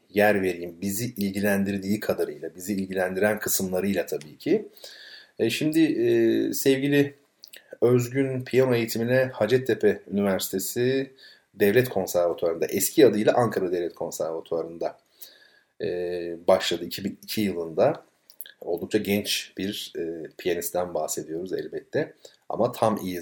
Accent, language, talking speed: native, Turkish, 105 wpm